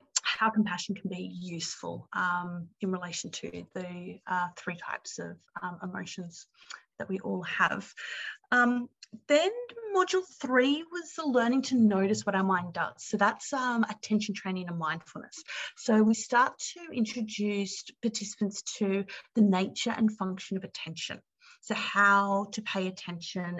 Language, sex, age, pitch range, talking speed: English, female, 30-49, 180-225 Hz, 150 wpm